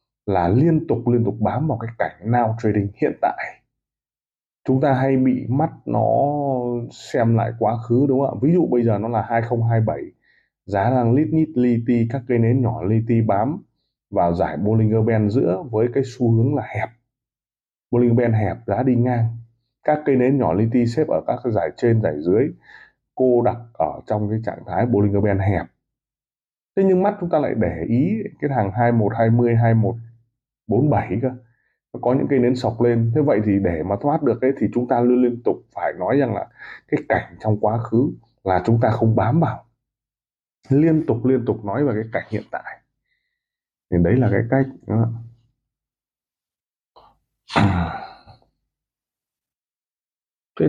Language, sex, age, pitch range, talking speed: Vietnamese, male, 20-39, 110-130 Hz, 180 wpm